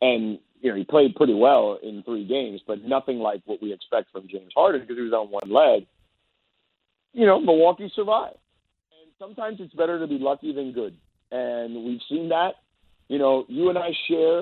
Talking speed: 200 wpm